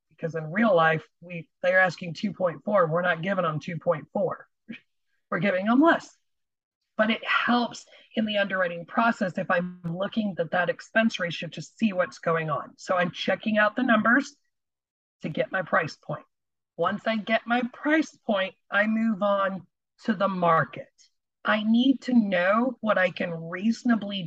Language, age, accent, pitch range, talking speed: English, 40-59, American, 175-225 Hz, 165 wpm